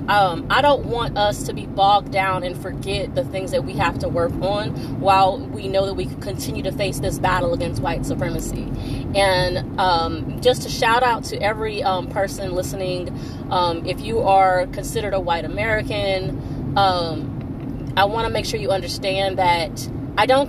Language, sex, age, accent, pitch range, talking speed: English, female, 20-39, American, 135-195 Hz, 185 wpm